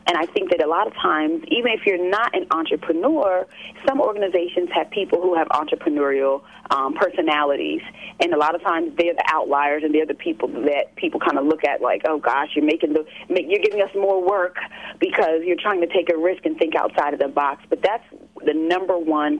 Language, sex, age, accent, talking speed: English, female, 30-49, American, 210 wpm